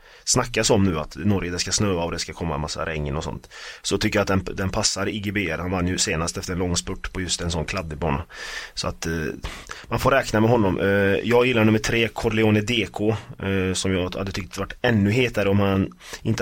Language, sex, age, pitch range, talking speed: Swedish, male, 30-49, 90-110 Hz, 225 wpm